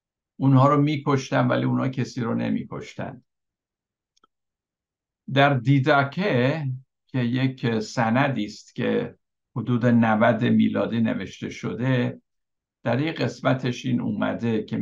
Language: Persian